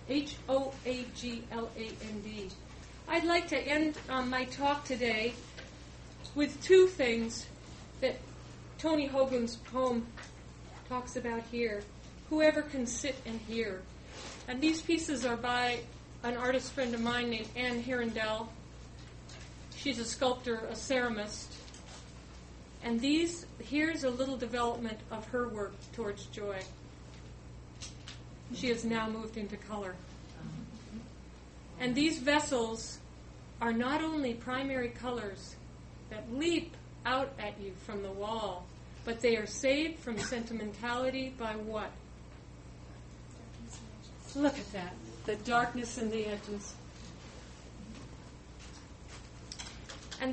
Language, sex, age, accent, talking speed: English, female, 40-59, American, 110 wpm